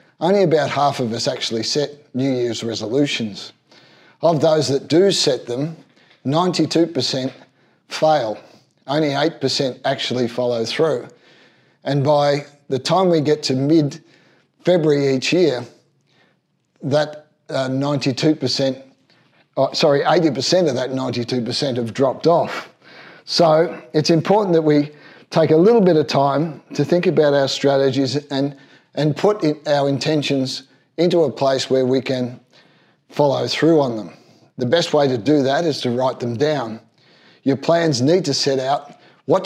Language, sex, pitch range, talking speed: English, male, 130-160 Hz, 145 wpm